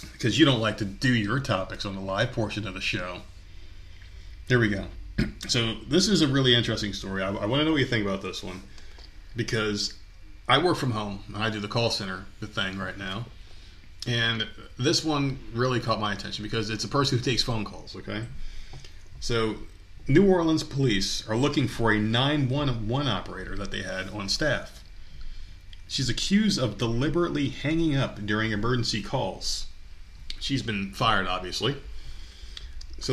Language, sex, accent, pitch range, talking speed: English, male, American, 95-130 Hz, 170 wpm